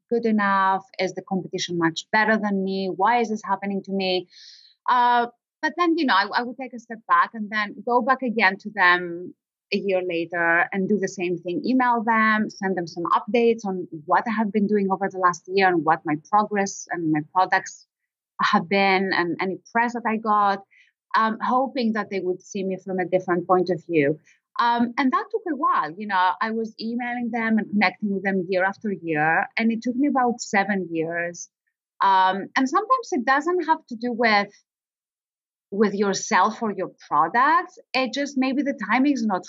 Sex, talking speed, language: female, 200 wpm, English